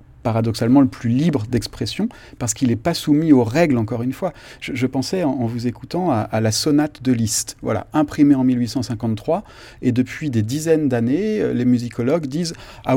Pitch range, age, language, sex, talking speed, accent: 120-150 Hz, 30-49, French, male, 185 wpm, French